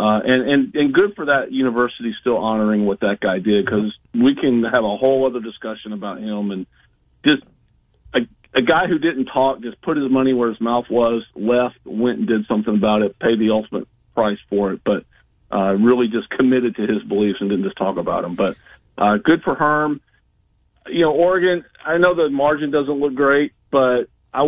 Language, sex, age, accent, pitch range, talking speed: English, male, 40-59, American, 110-140 Hz, 205 wpm